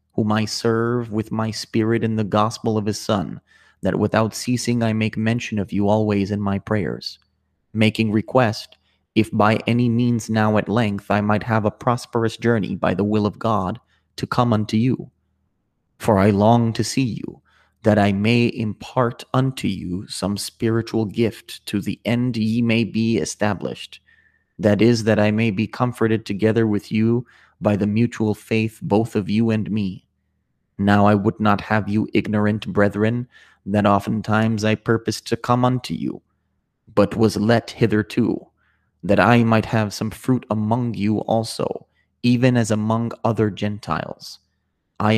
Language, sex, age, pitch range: English, male, 30-49, 105-115 Hz